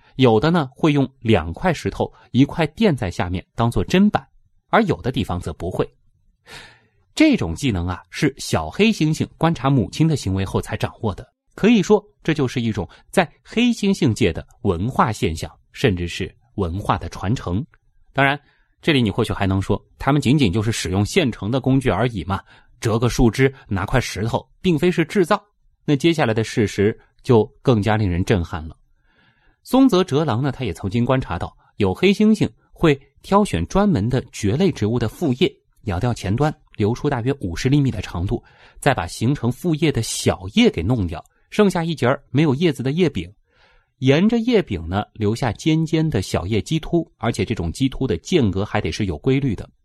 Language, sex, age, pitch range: Chinese, male, 30-49, 105-155 Hz